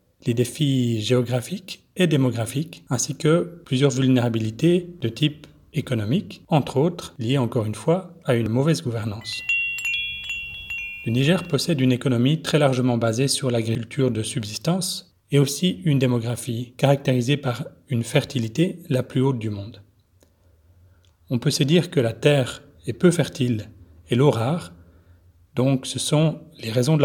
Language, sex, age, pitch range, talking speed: English, male, 40-59, 115-150 Hz, 145 wpm